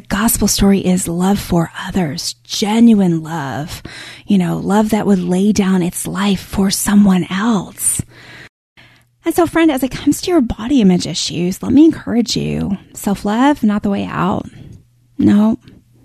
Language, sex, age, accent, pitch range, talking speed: English, female, 20-39, American, 185-240 Hz, 155 wpm